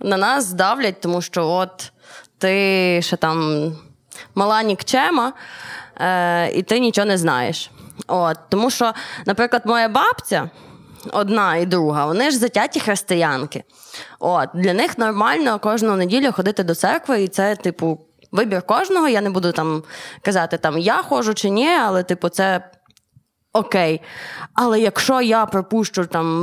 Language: Ukrainian